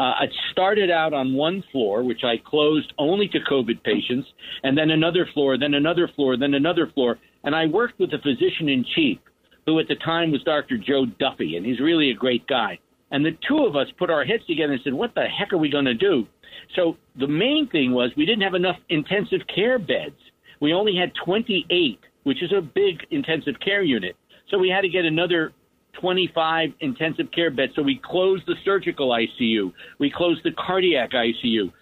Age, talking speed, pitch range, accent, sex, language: 50-69, 200 wpm, 140-185 Hz, American, male, English